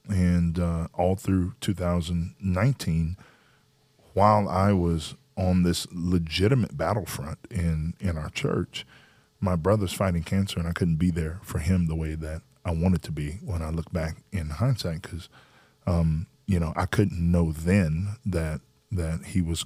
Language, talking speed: English, 155 wpm